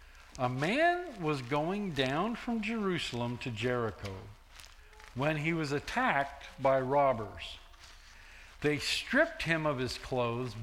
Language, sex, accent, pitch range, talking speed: English, male, American, 100-165 Hz, 120 wpm